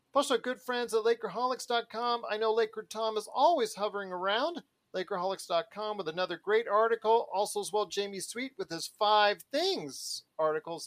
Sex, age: male, 40-59